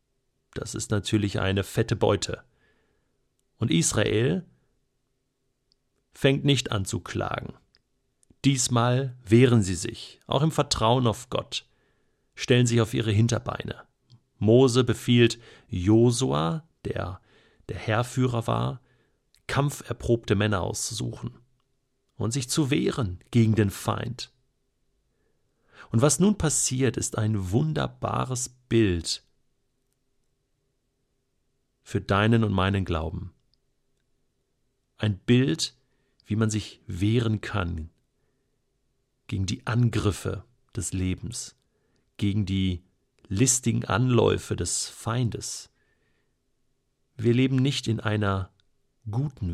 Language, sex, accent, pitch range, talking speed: German, male, German, 105-130 Hz, 100 wpm